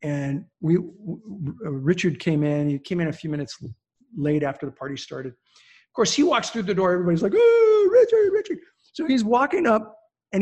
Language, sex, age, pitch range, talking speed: English, male, 40-59, 145-215 Hz, 190 wpm